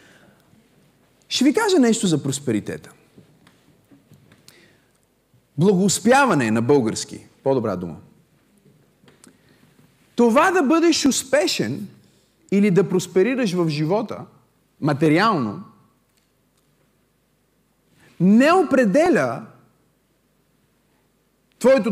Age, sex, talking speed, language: 40-59, male, 65 wpm, Bulgarian